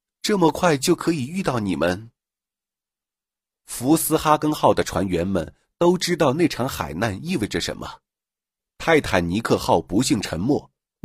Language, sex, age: Chinese, male, 50-69